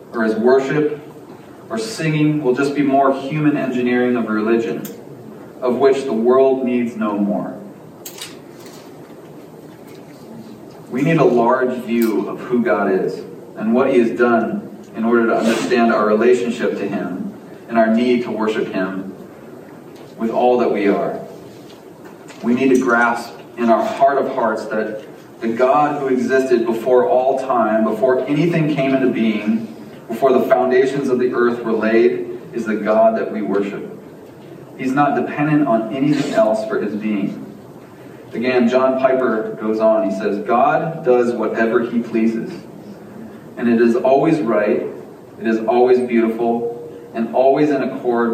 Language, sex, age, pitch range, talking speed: English, male, 30-49, 115-135 Hz, 155 wpm